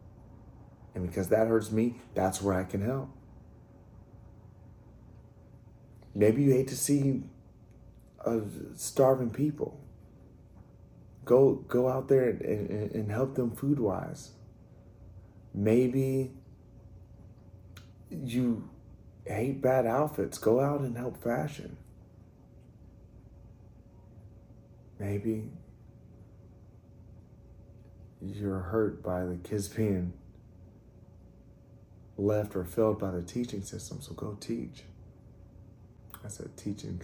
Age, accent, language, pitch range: 30-49, American, English, 100-125 Hz